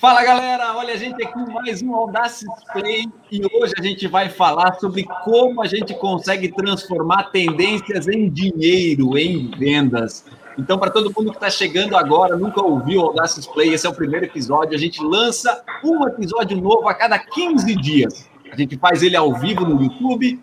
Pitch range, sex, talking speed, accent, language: 180-230 Hz, male, 190 wpm, Brazilian, Portuguese